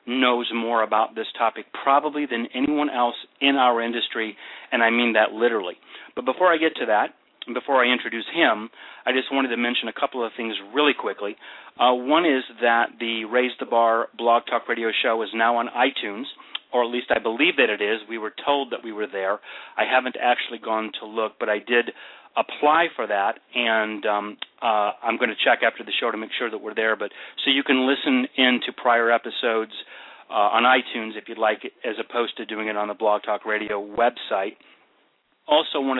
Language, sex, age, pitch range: English, male, 40-59, 110-125 Hz